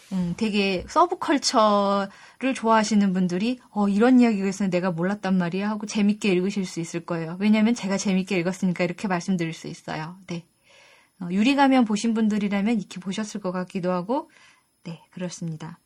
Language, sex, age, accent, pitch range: Korean, female, 20-39, native, 185-255 Hz